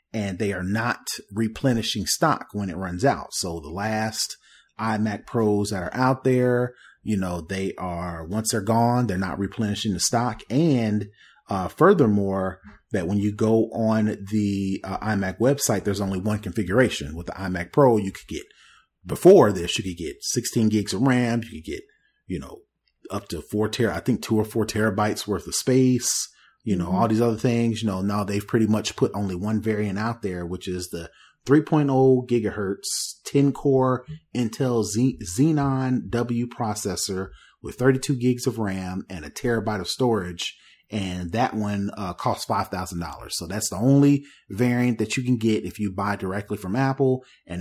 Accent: American